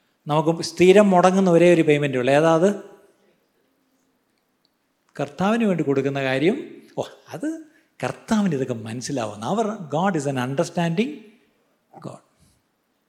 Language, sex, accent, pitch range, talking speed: Malayalam, male, native, 135-195 Hz, 100 wpm